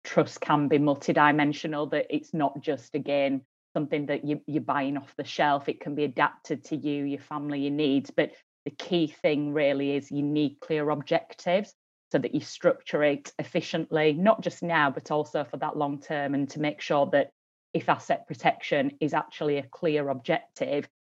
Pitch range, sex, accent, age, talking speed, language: 145-175 Hz, female, British, 30-49, 180 wpm, English